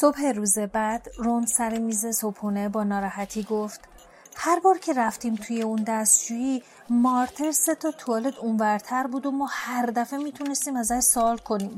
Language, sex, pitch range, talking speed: Persian, female, 210-255 Hz, 170 wpm